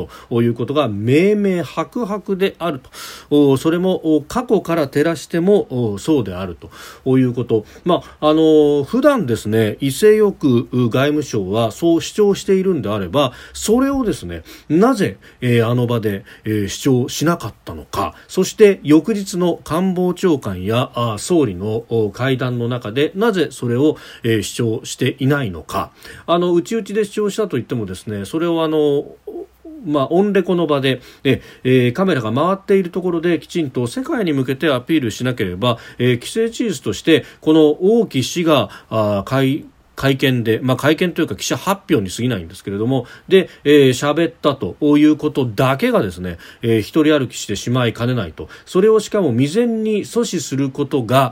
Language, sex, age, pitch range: Japanese, male, 40-59, 115-170 Hz